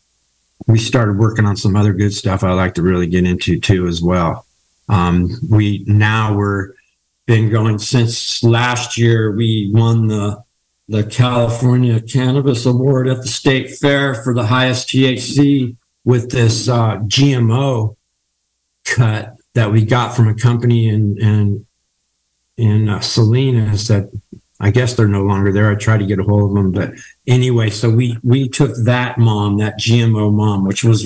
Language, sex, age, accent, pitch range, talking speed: English, male, 50-69, American, 105-125 Hz, 165 wpm